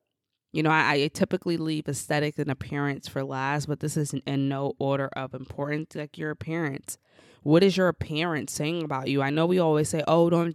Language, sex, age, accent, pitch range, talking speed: English, female, 20-39, American, 140-170 Hz, 205 wpm